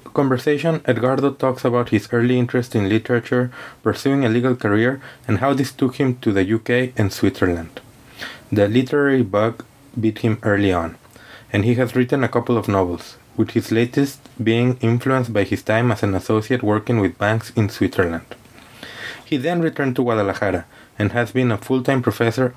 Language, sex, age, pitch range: English, male, 20-39, 105-125 Hz